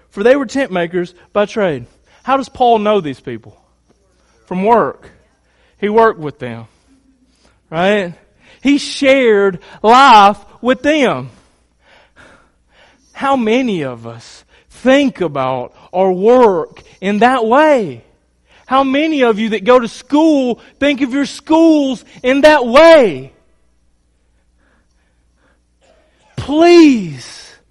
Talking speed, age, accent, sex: 115 wpm, 40-59, American, male